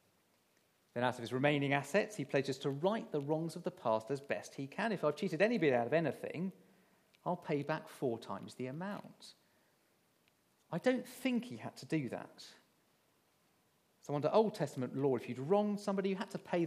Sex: male